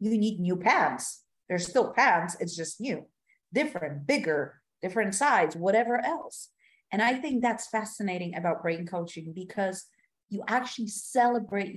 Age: 50-69